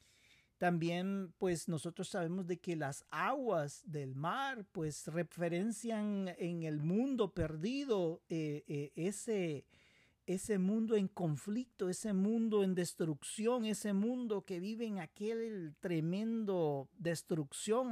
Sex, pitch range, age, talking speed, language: male, 150-210 Hz, 40-59, 115 wpm, Spanish